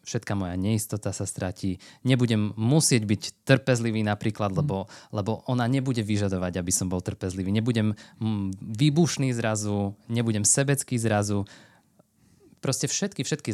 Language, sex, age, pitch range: Slovak, male, 20-39, 100-120 Hz